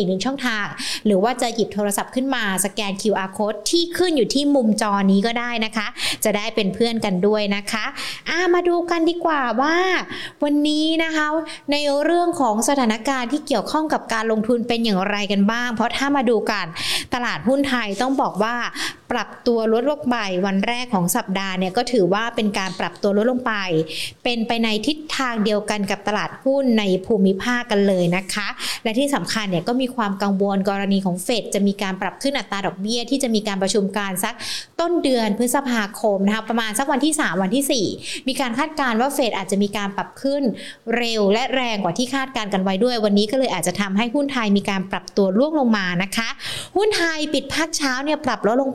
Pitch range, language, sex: 200-265 Hz, Thai, female